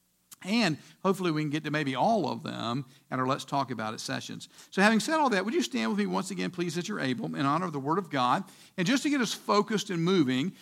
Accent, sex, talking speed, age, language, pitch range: American, male, 270 wpm, 50-69, English, 145-205 Hz